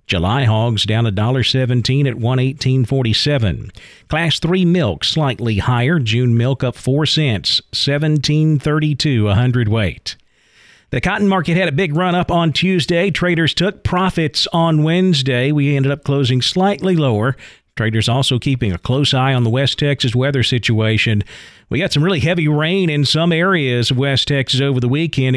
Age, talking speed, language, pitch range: 50-69, 175 wpm, English, 120-155 Hz